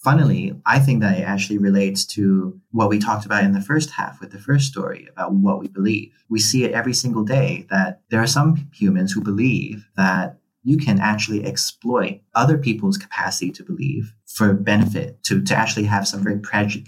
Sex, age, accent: male, 30-49, American